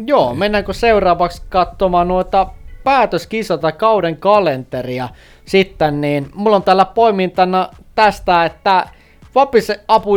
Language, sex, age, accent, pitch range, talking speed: Finnish, male, 20-39, native, 165-195 Hz, 105 wpm